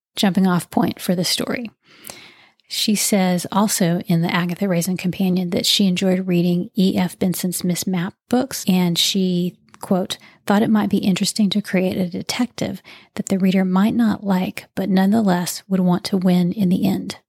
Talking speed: 175 wpm